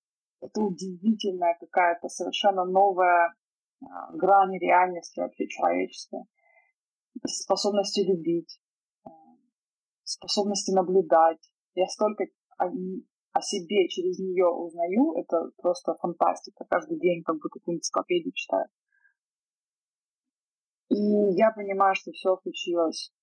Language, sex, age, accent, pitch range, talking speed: Russian, female, 20-39, native, 170-210 Hz, 95 wpm